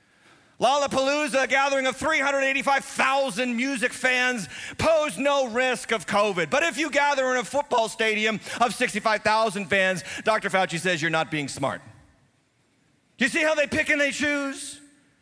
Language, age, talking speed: English, 40-59, 155 wpm